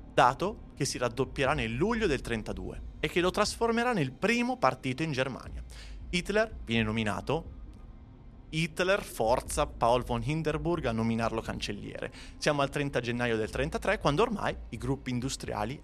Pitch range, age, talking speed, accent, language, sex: 115-175 Hz, 30-49, 150 wpm, native, Italian, male